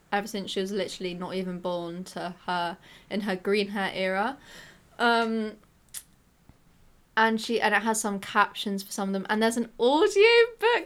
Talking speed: 175 wpm